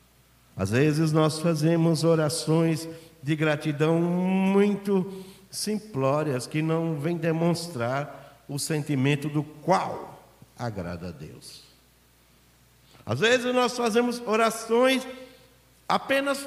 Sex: male